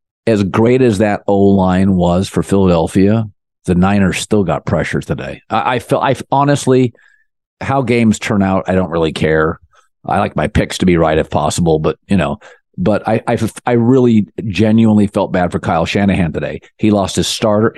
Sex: male